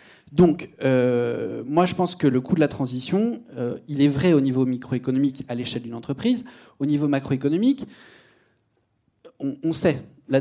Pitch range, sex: 135-190 Hz, male